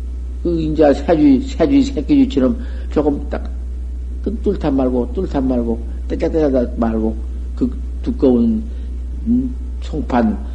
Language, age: Korean, 50-69